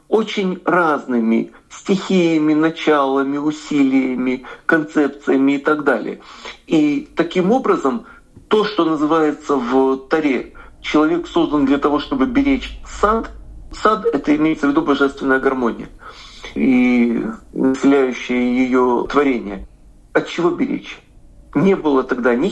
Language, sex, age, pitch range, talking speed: Russian, male, 40-59, 145-225 Hz, 110 wpm